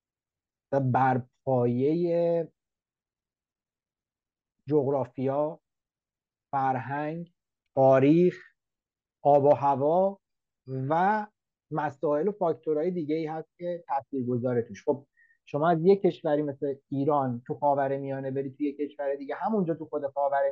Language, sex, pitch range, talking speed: Persian, male, 135-170 Hz, 110 wpm